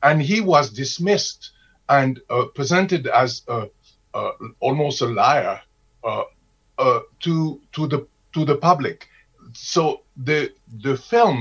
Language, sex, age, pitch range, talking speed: English, male, 50-69, 130-160 Hz, 130 wpm